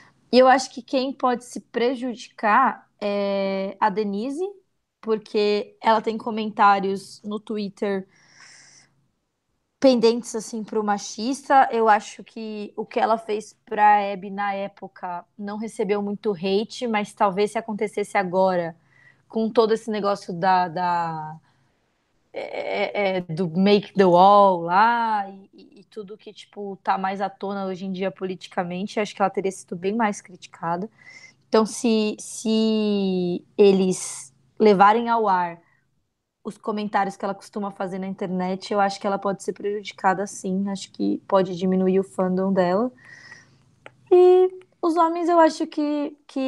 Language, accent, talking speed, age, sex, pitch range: Portuguese, Brazilian, 140 wpm, 20-39, female, 195-225 Hz